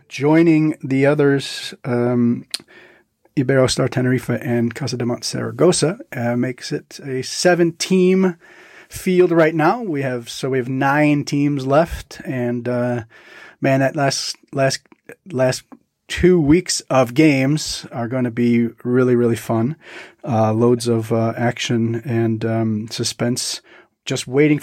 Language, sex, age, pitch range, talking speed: English, male, 30-49, 120-150 Hz, 135 wpm